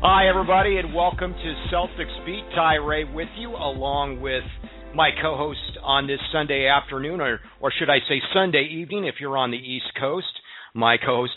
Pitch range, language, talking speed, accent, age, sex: 115-145 Hz, English, 180 wpm, American, 40-59, male